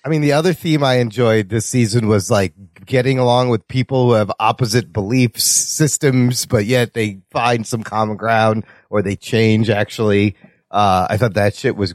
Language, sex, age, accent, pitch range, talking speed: English, male, 30-49, American, 120-165 Hz, 185 wpm